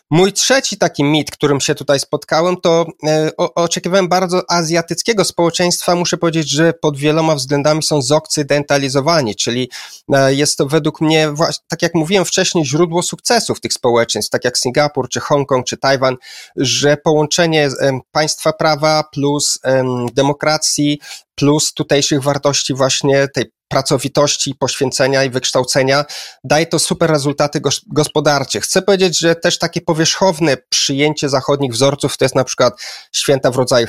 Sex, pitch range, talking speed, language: male, 140-170 Hz, 135 wpm, Polish